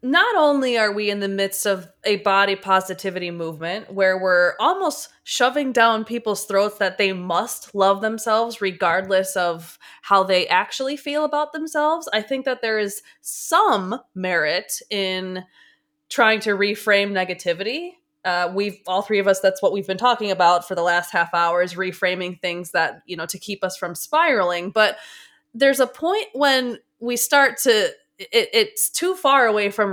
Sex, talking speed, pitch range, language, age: female, 170 wpm, 195-270 Hz, English, 20-39